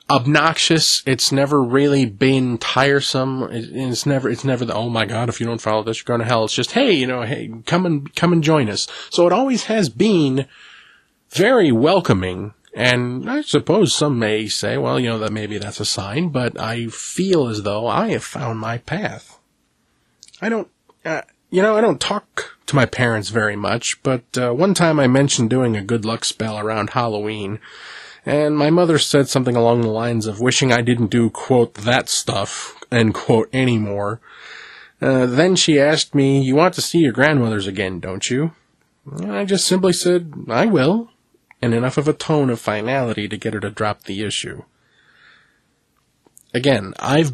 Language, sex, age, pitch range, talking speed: English, male, 30-49, 110-145 Hz, 190 wpm